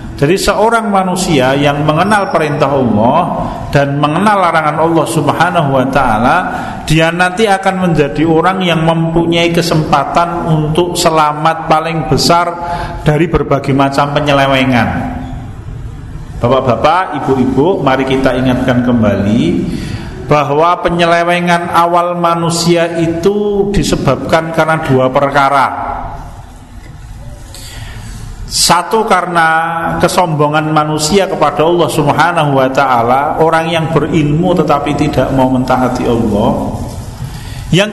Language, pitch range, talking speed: Indonesian, 130-170 Hz, 100 wpm